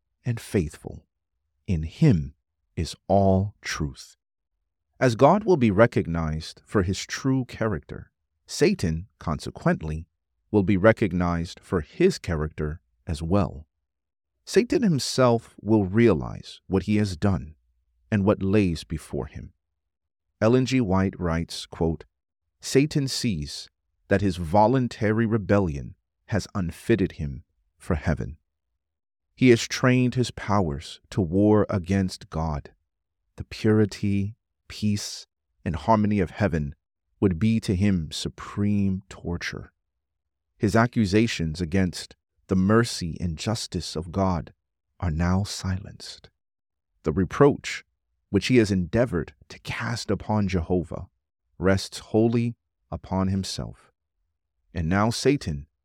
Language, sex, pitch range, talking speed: English, male, 80-105 Hz, 115 wpm